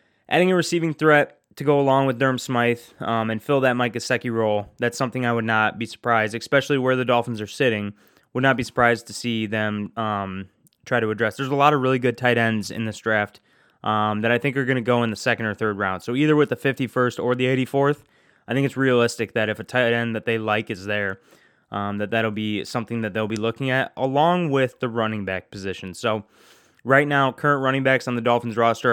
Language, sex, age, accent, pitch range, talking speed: English, male, 20-39, American, 110-135 Hz, 235 wpm